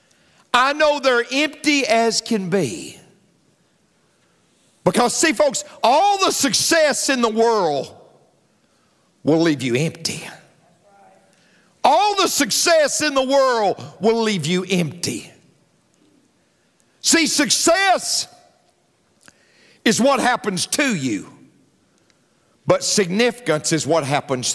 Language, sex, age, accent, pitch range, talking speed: English, male, 50-69, American, 150-240 Hz, 105 wpm